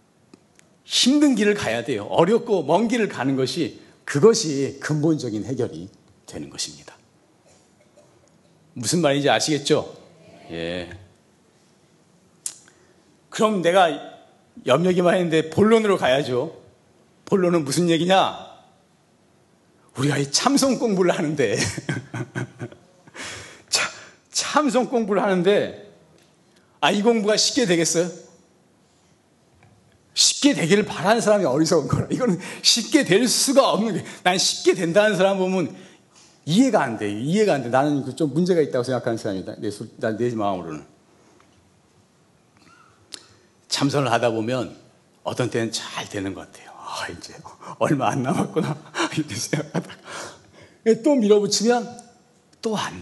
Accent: native